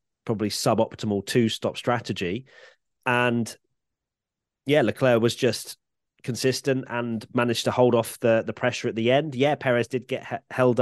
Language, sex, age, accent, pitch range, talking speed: English, male, 30-49, British, 105-130 Hz, 150 wpm